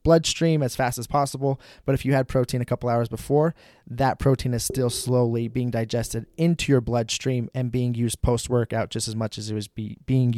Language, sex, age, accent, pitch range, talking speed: English, male, 20-39, American, 120-145 Hz, 200 wpm